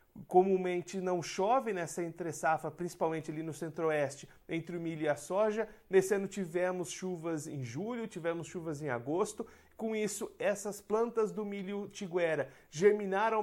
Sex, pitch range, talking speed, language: male, 155-195 Hz, 150 wpm, Portuguese